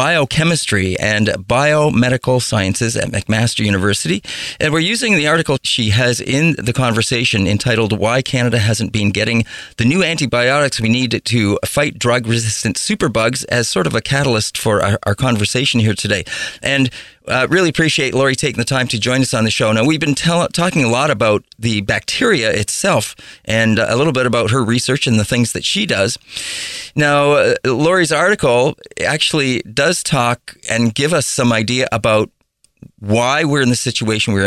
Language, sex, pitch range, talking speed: English, male, 110-135 Hz, 170 wpm